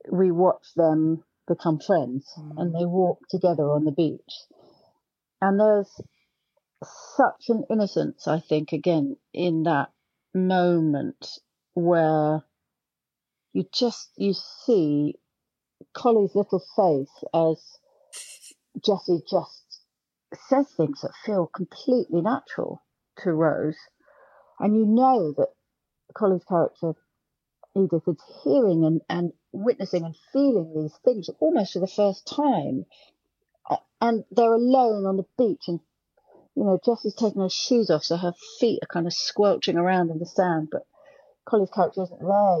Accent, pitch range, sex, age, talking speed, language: British, 170-235 Hz, female, 40-59, 130 wpm, English